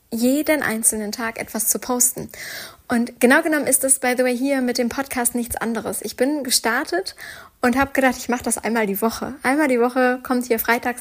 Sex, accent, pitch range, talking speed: female, German, 230-265 Hz, 205 wpm